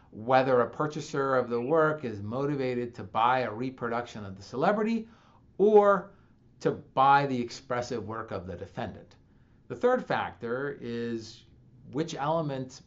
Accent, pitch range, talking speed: American, 115-150 Hz, 140 wpm